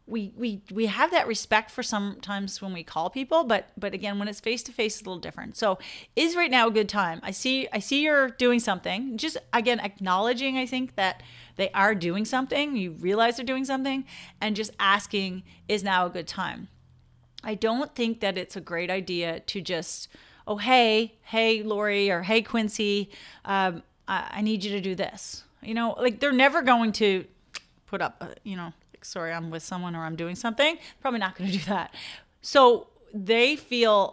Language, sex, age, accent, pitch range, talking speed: English, female, 40-59, American, 190-240 Hz, 200 wpm